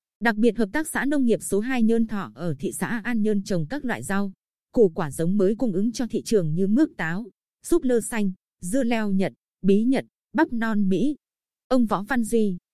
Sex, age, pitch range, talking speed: female, 20-39, 185-235 Hz, 220 wpm